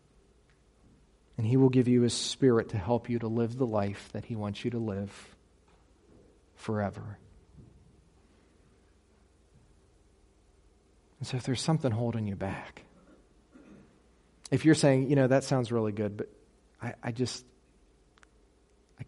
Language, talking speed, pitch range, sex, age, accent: English, 130 wpm, 100-120 Hz, male, 40-59, American